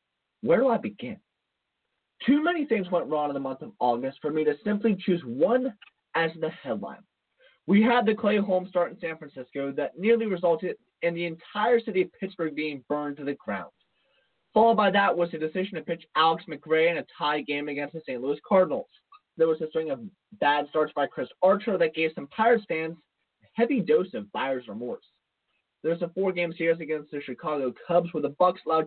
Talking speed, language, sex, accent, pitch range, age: 205 wpm, English, male, American, 155-225 Hz, 20-39